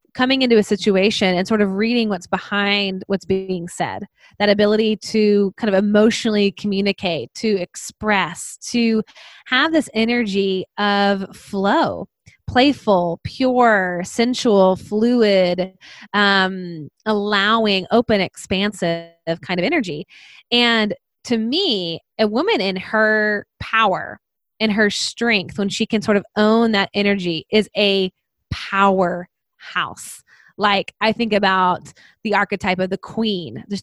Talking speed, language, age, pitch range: 130 wpm, English, 20-39, 190-220 Hz